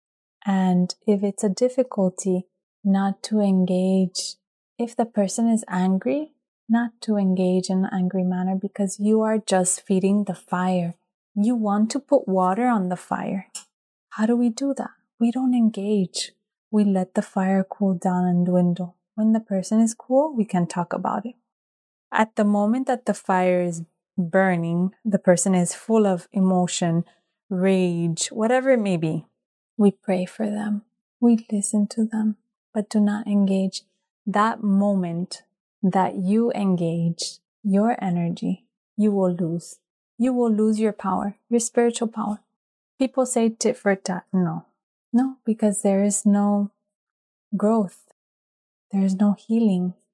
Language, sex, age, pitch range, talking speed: English, female, 20-39, 185-225 Hz, 150 wpm